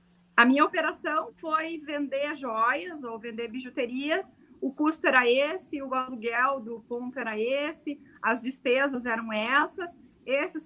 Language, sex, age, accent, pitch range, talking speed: Portuguese, female, 30-49, Brazilian, 245-305 Hz, 135 wpm